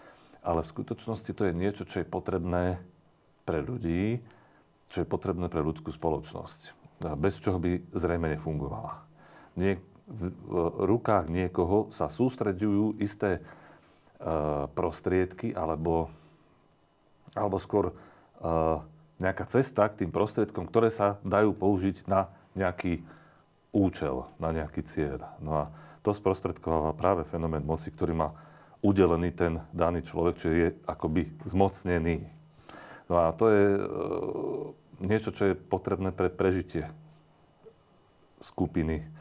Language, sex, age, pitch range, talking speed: Slovak, male, 40-59, 80-100 Hz, 115 wpm